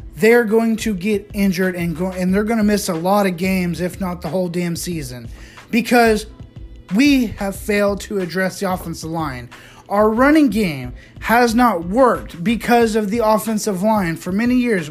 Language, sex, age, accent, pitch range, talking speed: English, male, 30-49, American, 170-220 Hz, 180 wpm